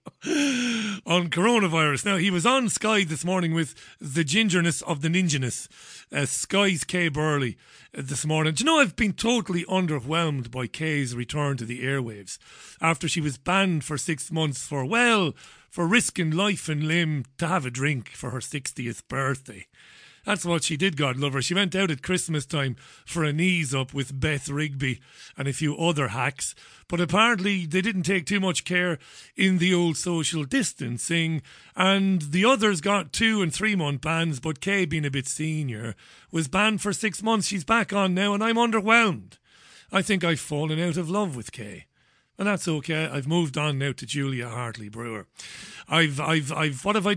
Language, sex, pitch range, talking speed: English, male, 145-195 Hz, 185 wpm